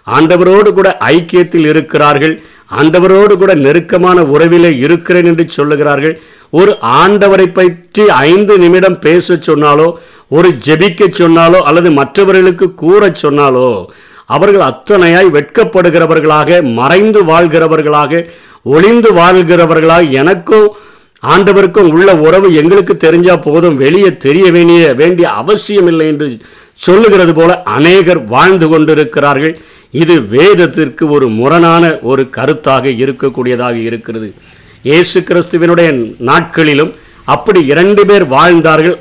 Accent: native